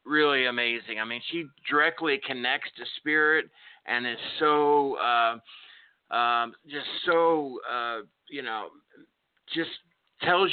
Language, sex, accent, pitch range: English, male, American, 115-150 Hz